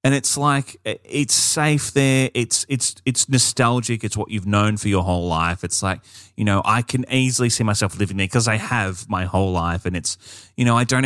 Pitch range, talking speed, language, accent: 95-125 Hz, 220 wpm, English, Australian